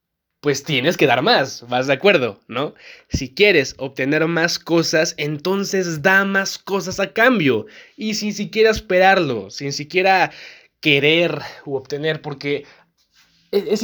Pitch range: 130-175 Hz